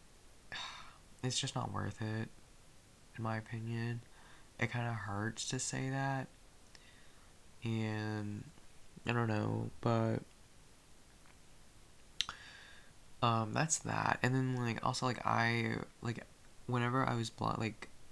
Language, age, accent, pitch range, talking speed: English, 20-39, American, 100-120 Hz, 115 wpm